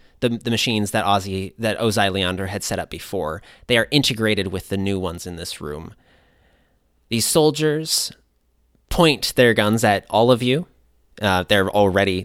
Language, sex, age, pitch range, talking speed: English, male, 30-49, 85-110 Hz, 165 wpm